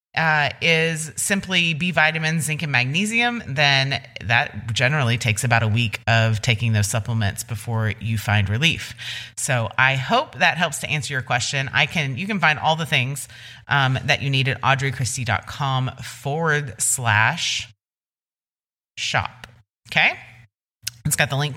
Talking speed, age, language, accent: 150 wpm, 30-49, English, American